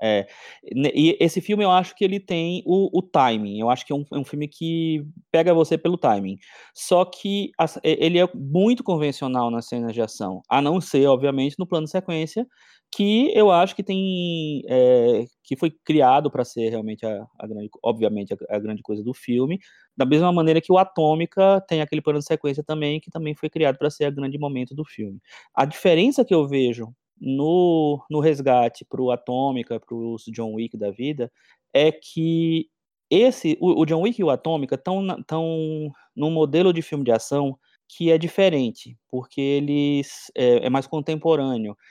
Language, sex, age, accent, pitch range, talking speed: Portuguese, male, 20-39, Brazilian, 125-165 Hz, 190 wpm